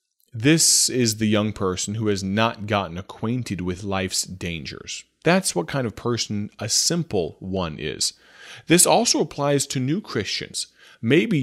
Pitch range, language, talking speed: 95-125 Hz, English, 150 wpm